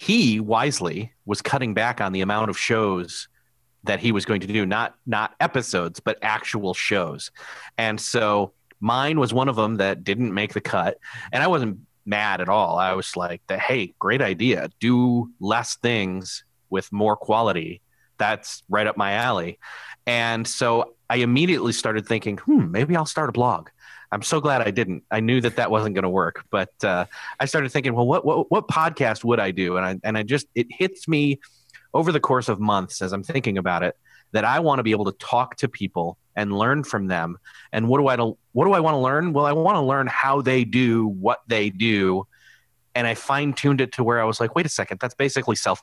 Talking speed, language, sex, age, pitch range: 215 wpm, English, male, 30-49, 100-130 Hz